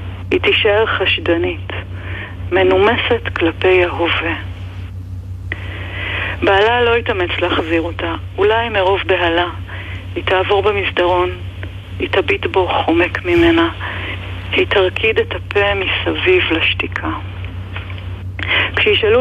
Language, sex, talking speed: Hebrew, female, 90 wpm